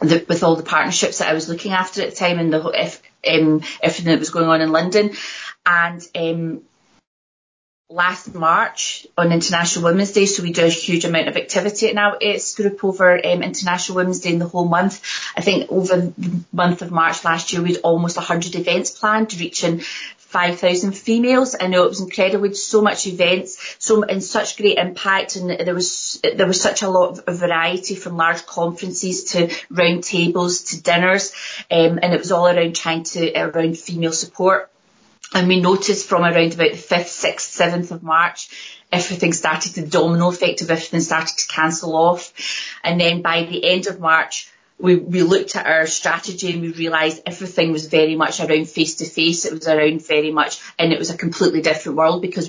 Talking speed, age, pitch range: 200 wpm, 30-49, 165-185 Hz